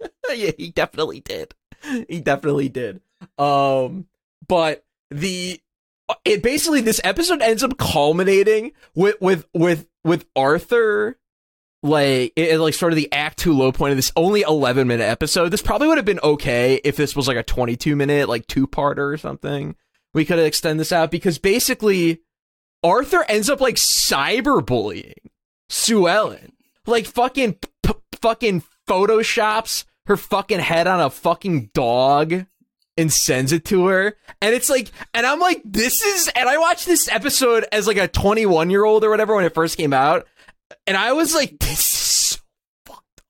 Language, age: English, 20-39